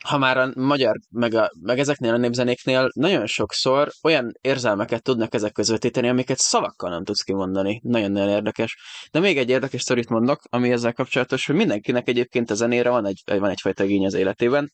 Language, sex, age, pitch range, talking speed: Hungarian, male, 20-39, 105-125 Hz, 185 wpm